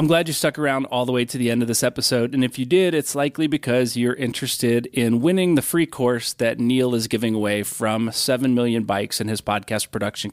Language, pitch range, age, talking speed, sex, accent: English, 120-140 Hz, 30-49, 240 wpm, male, American